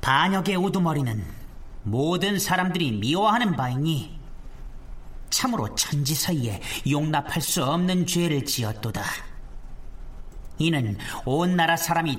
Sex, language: male, Korean